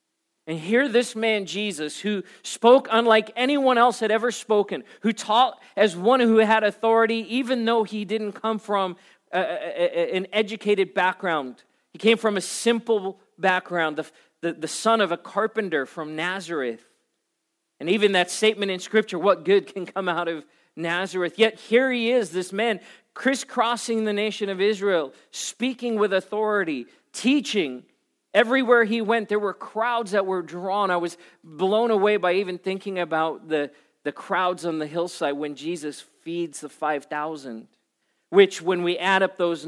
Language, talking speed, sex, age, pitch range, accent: English, 165 wpm, male, 40-59, 170-225 Hz, American